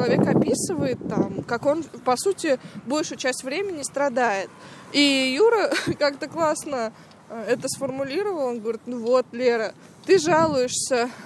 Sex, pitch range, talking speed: female, 245-310 Hz, 130 wpm